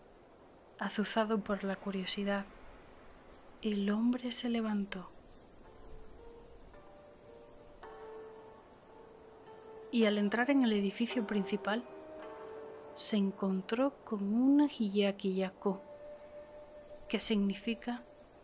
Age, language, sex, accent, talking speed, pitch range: 30-49, Spanish, female, Spanish, 75 wpm, 195-265 Hz